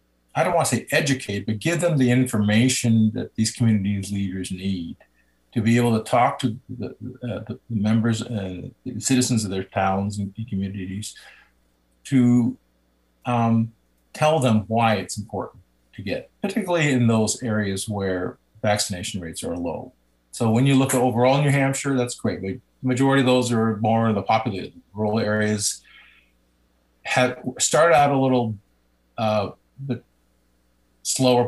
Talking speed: 155 wpm